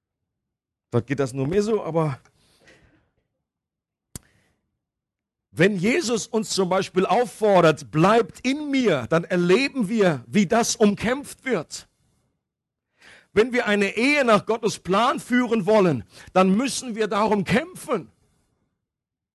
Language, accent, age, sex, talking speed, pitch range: German, German, 50-69, male, 115 wpm, 190-230 Hz